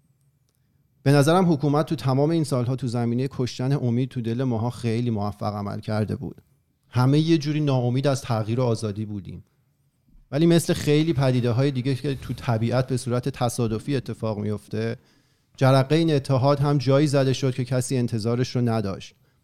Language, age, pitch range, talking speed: Persian, 40-59, 120-140 Hz, 165 wpm